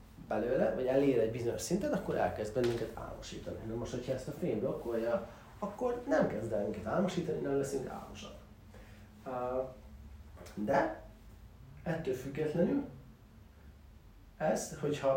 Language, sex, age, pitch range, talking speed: Hungarian, male, 30-49, 105-135 Hz, 125 wpm